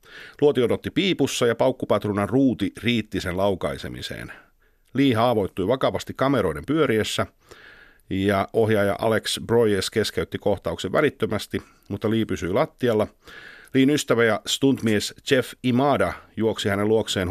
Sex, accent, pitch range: male, native, 95-115 Hz